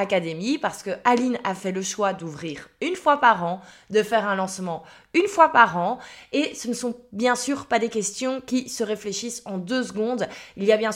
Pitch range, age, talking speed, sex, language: 190-245 Hz, 20-39, 220 wpm, female, French